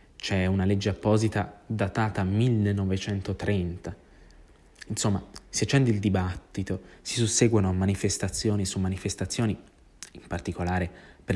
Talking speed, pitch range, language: 100 wpm, 90-110 Hz, Italian